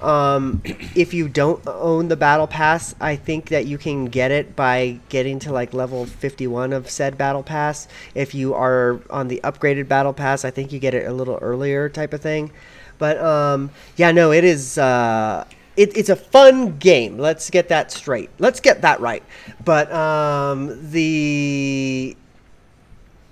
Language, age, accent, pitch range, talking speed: English, 30-49, American, 130-155 Hz, 175 wpm